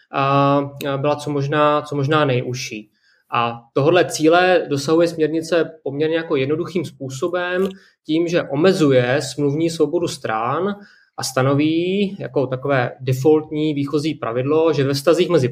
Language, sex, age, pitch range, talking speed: Czech, male, 20-39, 130-160 Hz, 130 wpm